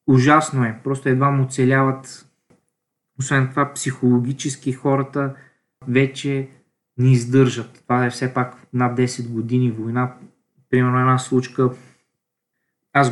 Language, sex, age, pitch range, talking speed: Bulgarian, male, 20-39, 125-140 Hz, 115 wpm